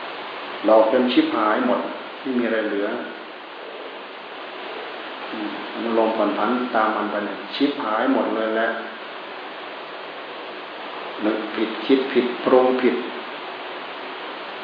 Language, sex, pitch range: Thai, male, 115-130 Hz